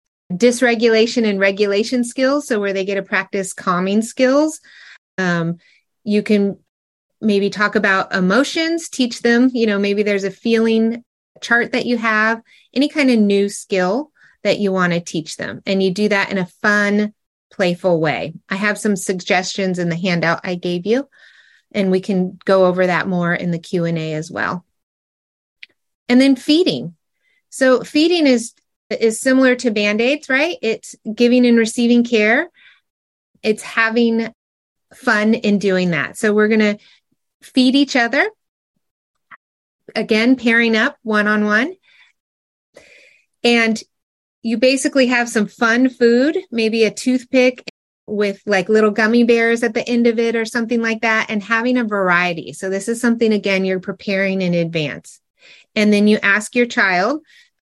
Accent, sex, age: American, female, 30-49